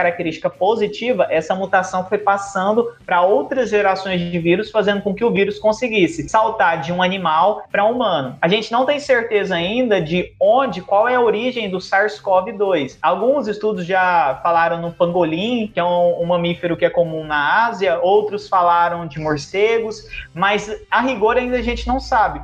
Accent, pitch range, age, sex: Brazilian, 180-235 Hz, 20-39, male